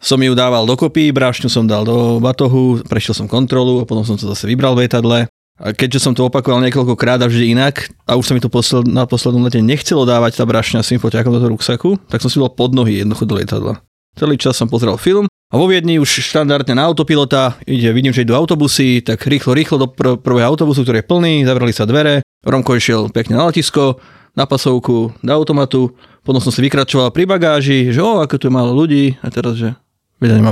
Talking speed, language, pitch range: 225 wpm, Slovak, 115-140 Hz